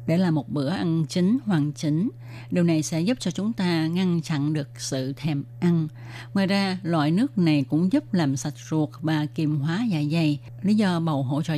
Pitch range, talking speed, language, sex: 140-180 Hz, 210 wpm, Vietnamese, female